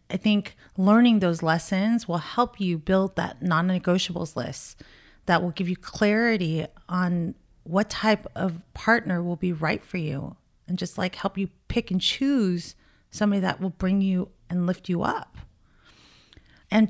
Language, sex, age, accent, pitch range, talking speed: English, female, 30-49, American, 170-215 Hz, 160 wpm